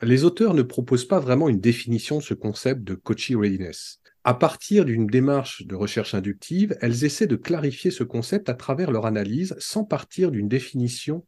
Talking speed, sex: 185 wpm, male